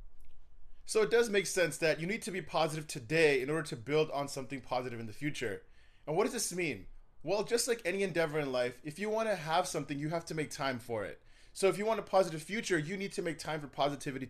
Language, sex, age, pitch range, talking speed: English, male, 20-39, 145-185 Hz, 250 wpm